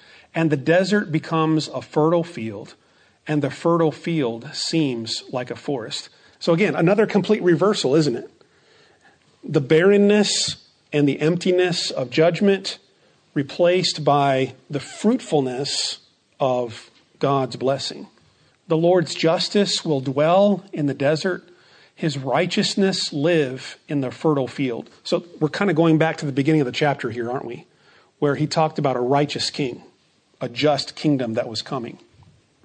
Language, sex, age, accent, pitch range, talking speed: English, male, 40-59, American, 140-175 Hz, 145 wpm